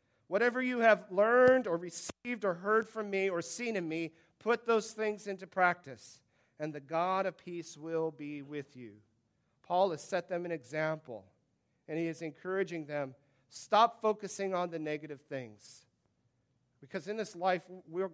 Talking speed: 165 wpm